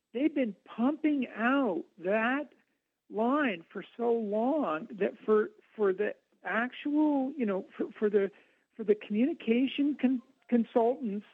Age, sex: 60-79, male